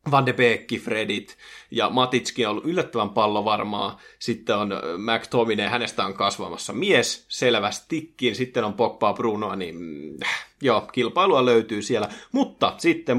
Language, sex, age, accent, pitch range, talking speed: Finnish, male, 30-49, native, 110-135 Hz, 135 wpm